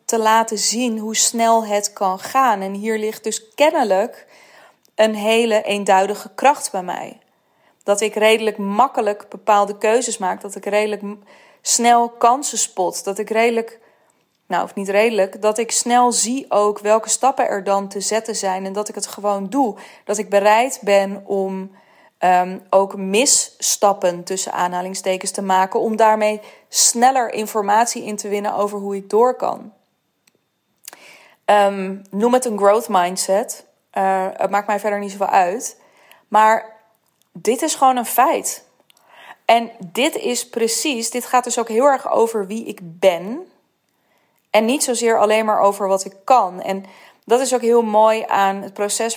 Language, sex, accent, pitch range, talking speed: Dutch, female, Dutch, 200-230 Hz, 160 wpm